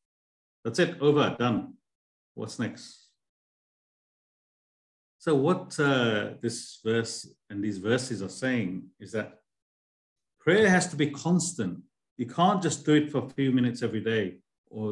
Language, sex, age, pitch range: English, male, 50-69, 95-140 Hz